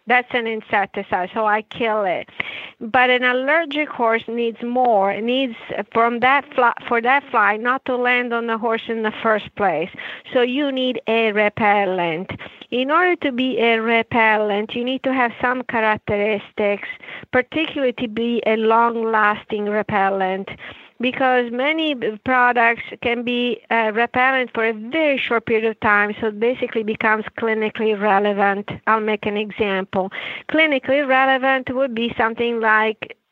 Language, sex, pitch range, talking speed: English, female, 215-255 Hz, 145 wpm